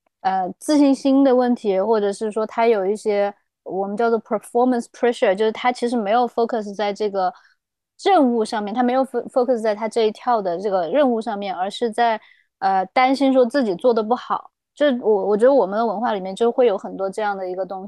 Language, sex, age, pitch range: Chinese, female, 20-39, 200-245 Hz